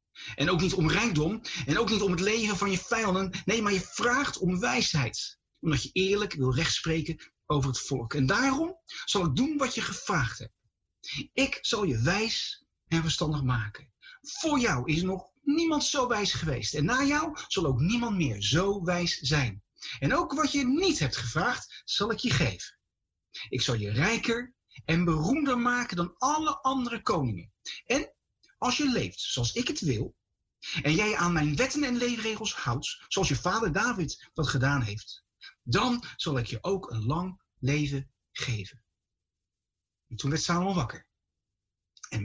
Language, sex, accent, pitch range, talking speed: Dutch, male, Dutch, 130-215 Hz, 175 wpm